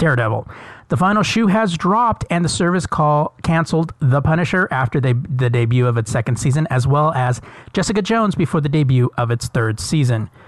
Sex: male